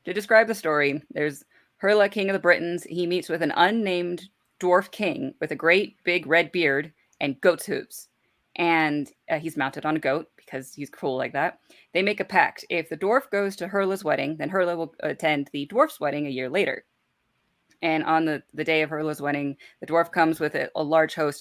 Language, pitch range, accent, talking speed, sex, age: English, 145-175 Hz, American, 210 wpm, female, 20-39